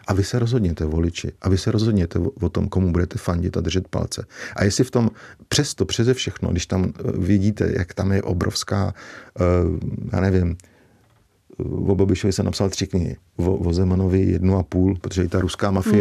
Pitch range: 90-110 Hz